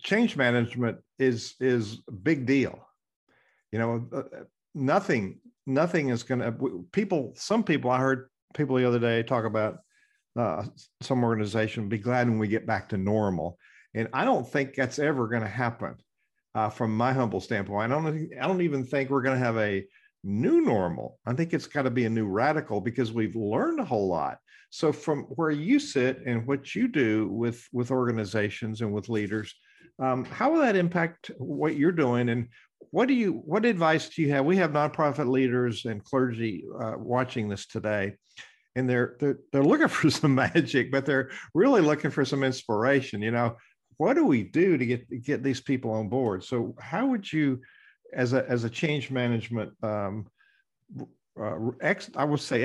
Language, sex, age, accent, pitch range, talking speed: English, male, 50-69, American, 115-150 Hz, 185 wpm